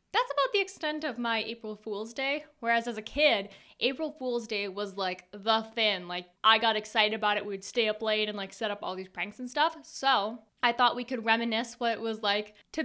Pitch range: 210-265 Hz